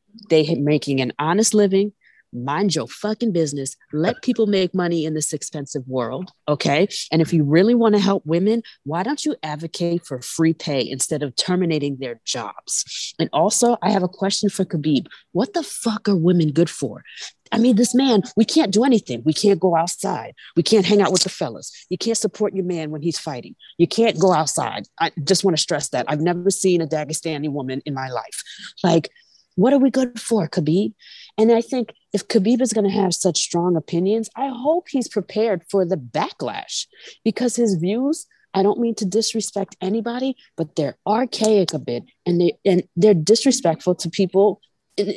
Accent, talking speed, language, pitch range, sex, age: American, 195 wpm, English, 160-225 Hz, female, 30-49